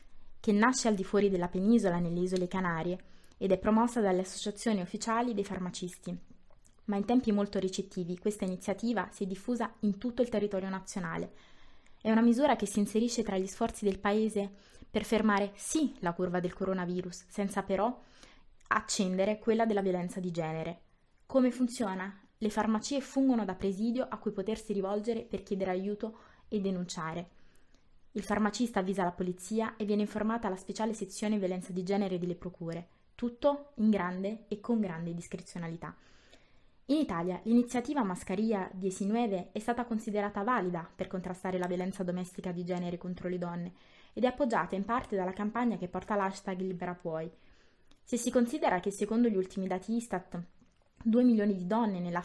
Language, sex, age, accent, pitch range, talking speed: Italian, female, 20-39, native, 185-220 Hz, 165 wpm